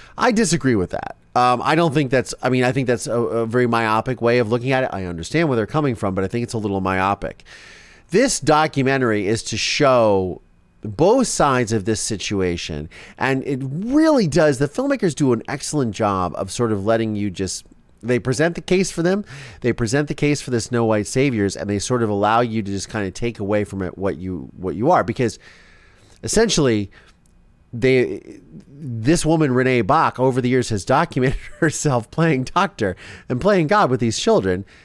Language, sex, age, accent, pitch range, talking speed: English, male, 30-49, American, 100-140 Hz, 200 wpm